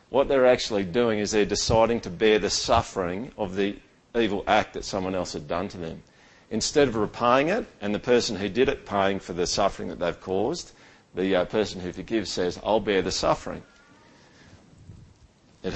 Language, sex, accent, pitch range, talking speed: English, male, Australian, 105-140 Hz, 190 wpm